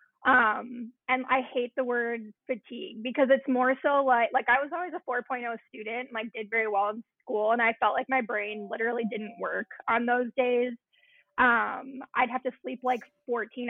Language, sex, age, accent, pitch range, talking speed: English, female, 20-39, American, 220-260 Hz, 195 wpm